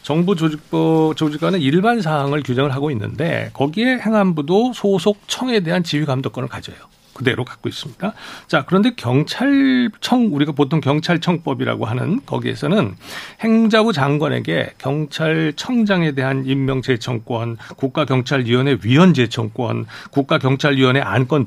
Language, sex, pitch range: Korean, male, 135-200 Hz